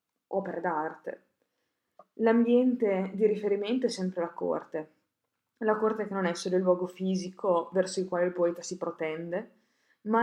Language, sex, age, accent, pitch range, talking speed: Italian, female, 20-39, native, 175-195 Hz, 155 wpm